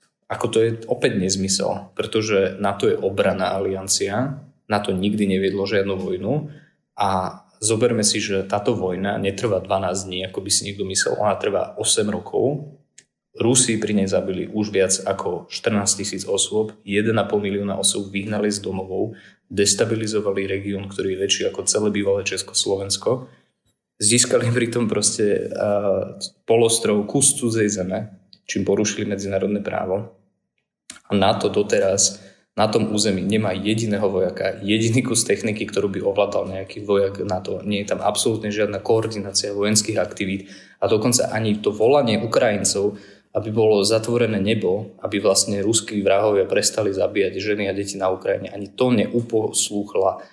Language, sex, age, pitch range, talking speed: Slovak, male, 20-39, 95-110 Hz, 140 wpm